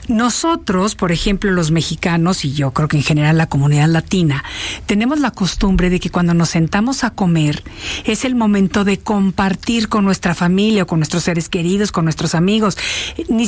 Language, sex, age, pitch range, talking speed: Spanish, female, 50-69, 170-225 Hz, 180 wpm